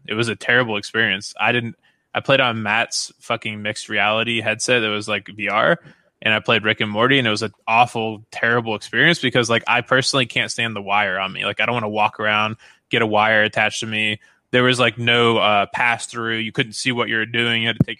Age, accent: 20-39, American